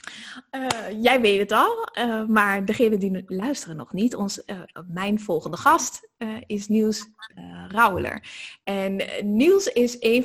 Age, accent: 20-39, Dutch